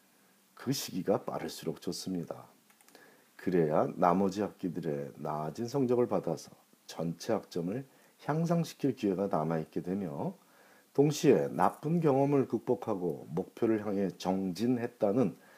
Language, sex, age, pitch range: Korean, male, 40-59, 90-130 Hz